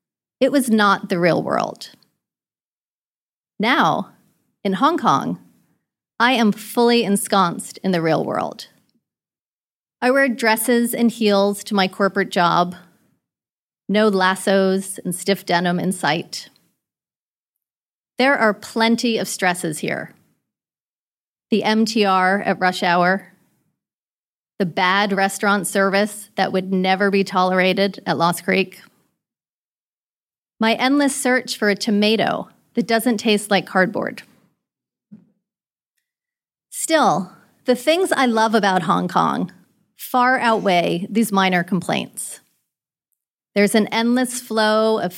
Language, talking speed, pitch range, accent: English, 115 wpm, 190-235 Hz, American